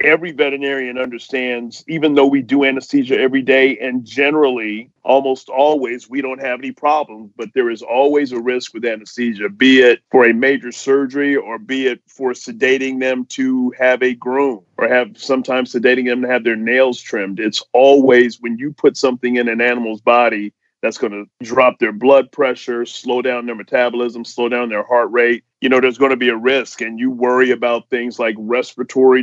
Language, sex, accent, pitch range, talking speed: English, male, American, 120-135 Hz, 195 wpm